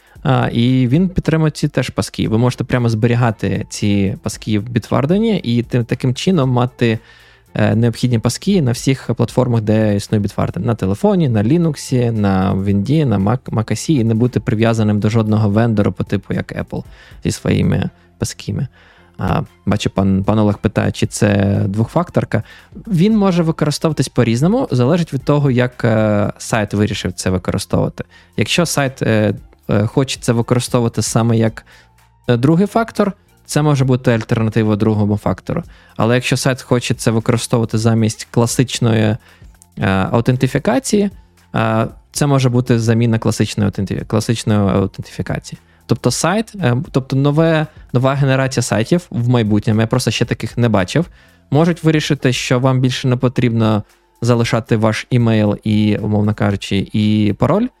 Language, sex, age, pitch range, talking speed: Ukrainian, male, 20-39, 105-130 Hz, 140 wpm